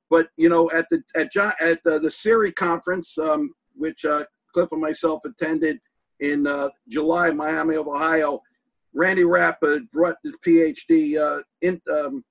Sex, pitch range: male, 160-215 Hz